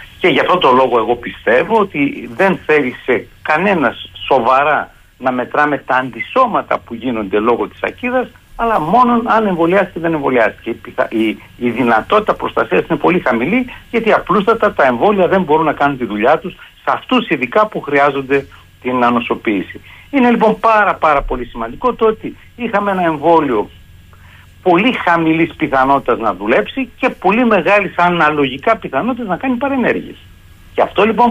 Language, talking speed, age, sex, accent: Greek, 155 wpm, 60-79, male, native